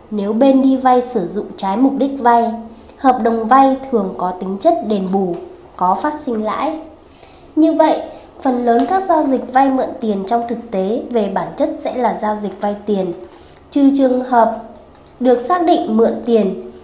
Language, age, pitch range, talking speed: Vietnamese, 20-39, 205-275 Hz, 190 wpm